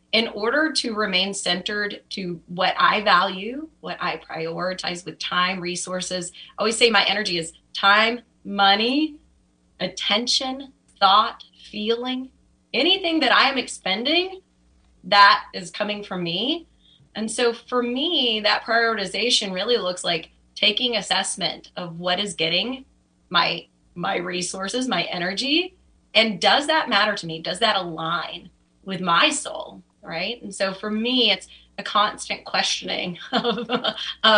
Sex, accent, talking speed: female, American, 135 wpm